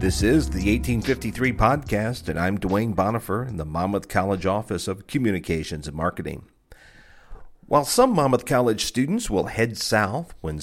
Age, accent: 50-69, American